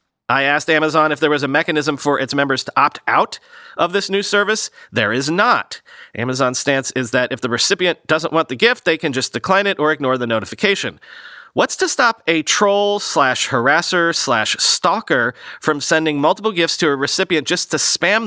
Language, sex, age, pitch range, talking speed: English, male, 30-49, 120-175 Hz, 185 wpm